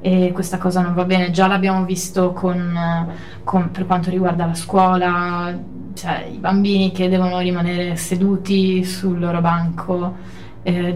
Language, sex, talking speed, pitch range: Italian, female, 150 wpm, 175-195 Hz